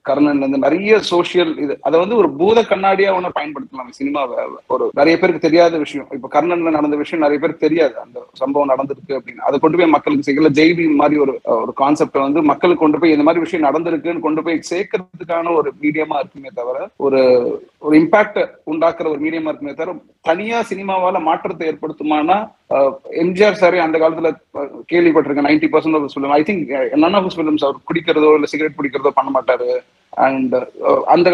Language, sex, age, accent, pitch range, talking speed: Tamil, male, 30-49, native, 150-195 Hz, 160 wpm